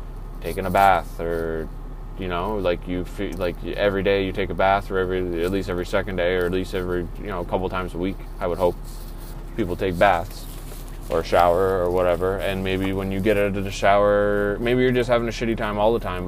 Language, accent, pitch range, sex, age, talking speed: English, American, 90-100 Hz, male, 20-39, 230 wpm